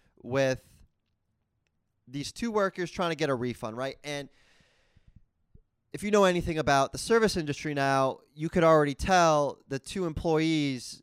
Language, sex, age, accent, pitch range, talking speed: English, male, 20-39, American, 110-150 Hz, 145 wpm